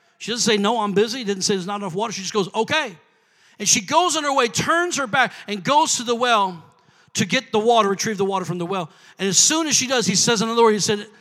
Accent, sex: American, male